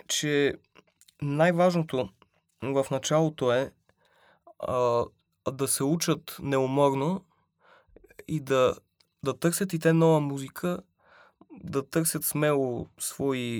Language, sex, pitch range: Bulgarian, male, 130-160 Hz